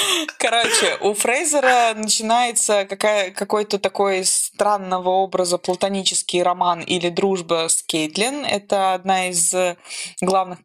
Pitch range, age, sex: 170-205 Hz, 20-39, female